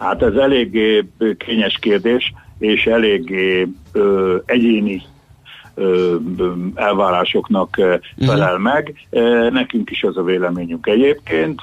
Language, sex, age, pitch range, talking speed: Hungarian, male, 60-79, 90-125 Hz, 95 wpm